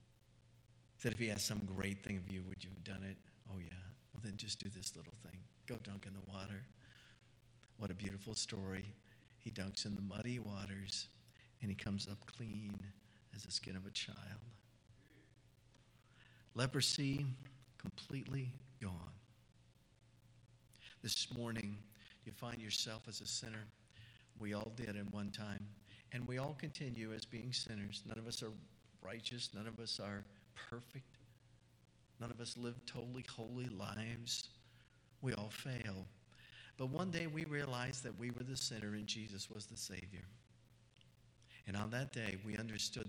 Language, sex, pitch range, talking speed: English, male, 105-120 Hz, 160 wpm